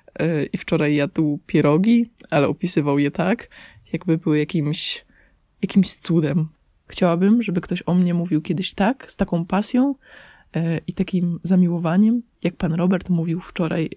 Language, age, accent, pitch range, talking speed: Polish, 20-39, native, 160-195 Hz, 135 wpm